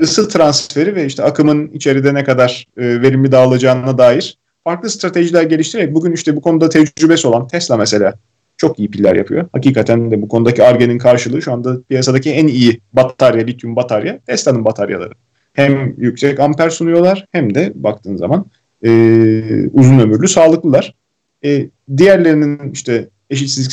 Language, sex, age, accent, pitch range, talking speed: Turkish, male, 40-59, native, 125-170 Hz, 150 wpm